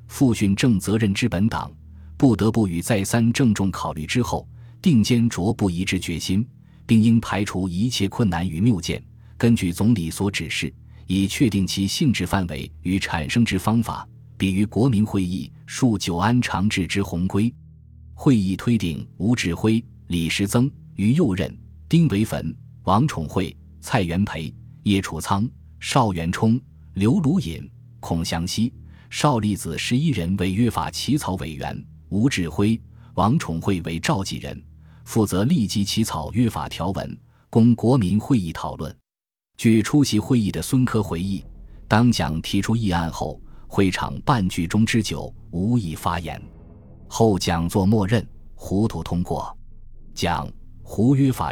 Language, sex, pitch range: Chinese, male, 85-115 Hz